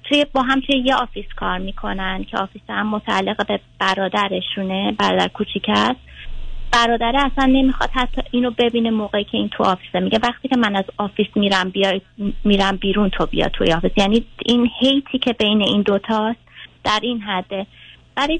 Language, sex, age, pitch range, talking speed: Persian, female, 20-39, 205-245 Hz, 165 wpm